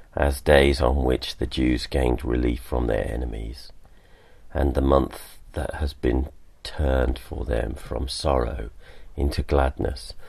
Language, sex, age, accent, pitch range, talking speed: English, male, 40-59, British, 65-80 Hz, 140 wpm